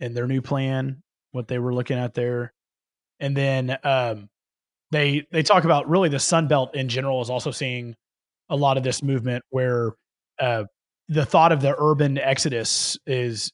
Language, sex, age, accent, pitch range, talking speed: English, male, 30-49, American, 120-140 Hz, 175 wpm